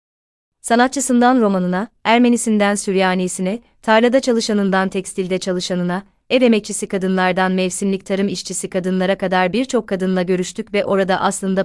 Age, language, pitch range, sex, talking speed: 30-49, Turkish, 180-210 Hz, female, 115 wpm